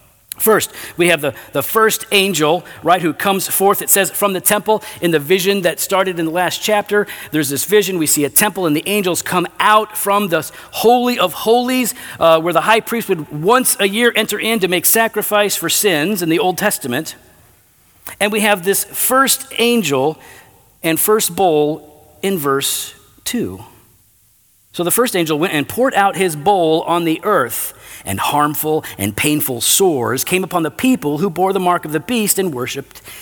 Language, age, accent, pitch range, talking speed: English, 40-59, American, 160-225 Hz, 190 wpm